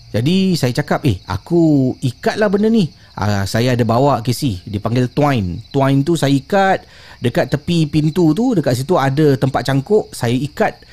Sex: male